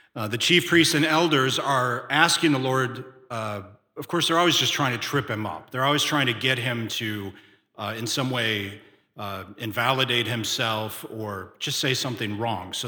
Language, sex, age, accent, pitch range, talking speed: English, male, 40-59, American, 110-150 Hz, 190 wpm